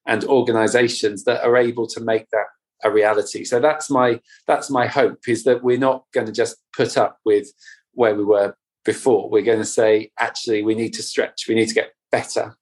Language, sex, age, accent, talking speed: English, male, 40-59, British, 210 wpm